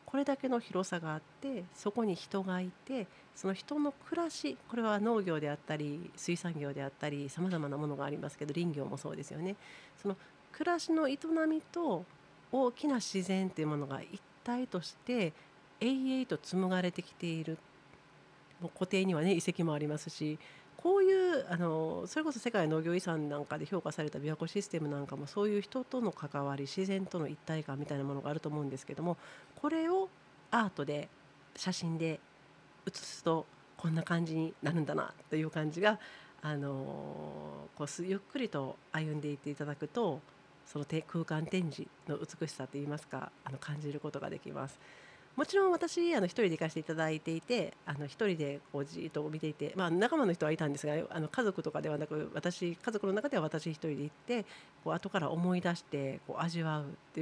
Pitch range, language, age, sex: 150-200 Hz, Japanese, 40-59, female